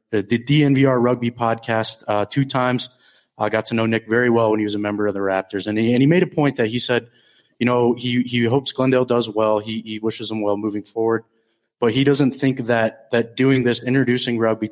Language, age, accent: English, 30-49, American